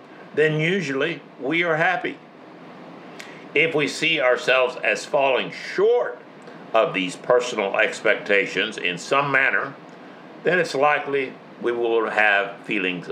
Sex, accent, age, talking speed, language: male, American, 60-79, 120 wpm, English